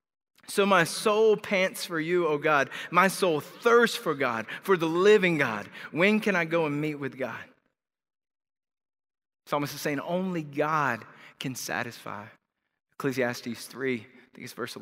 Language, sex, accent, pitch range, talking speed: English, male, American, 130-170 Hz, 155 wpm